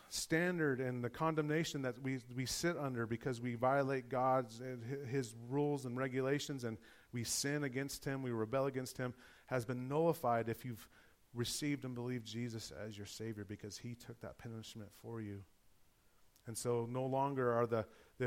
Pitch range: 115-140 Hz